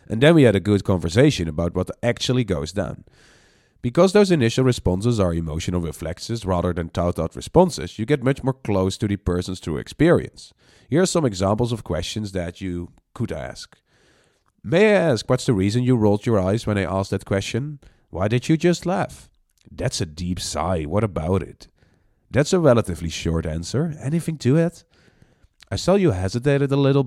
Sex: male